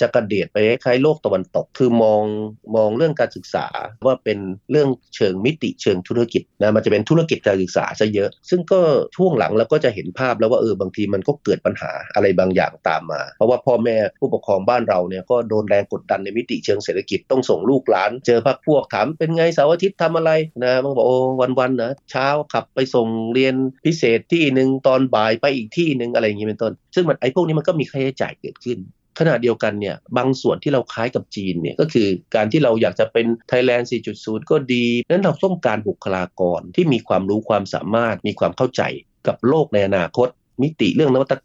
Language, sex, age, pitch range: Thai, male, 30-49, 110-145 Hz